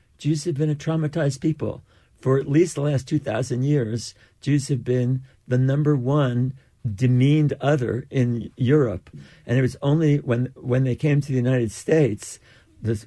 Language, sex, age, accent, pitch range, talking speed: English, male, 60-79, American, 115-135 Hz, 165 wpm